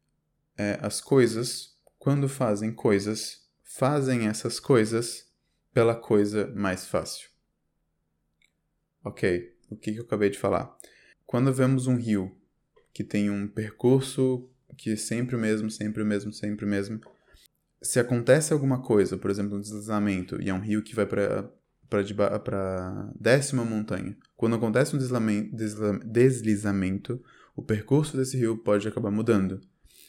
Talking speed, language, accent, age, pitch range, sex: 145 wpm, Portuguese, Brazilian, 20-39, 100-115 Hz, male